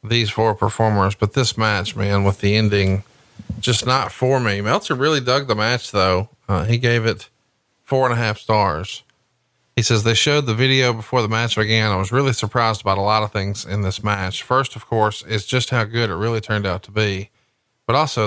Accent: American